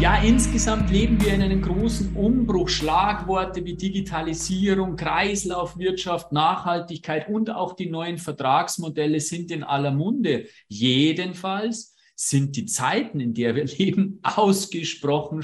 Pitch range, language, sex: 150-200 Hz, German, male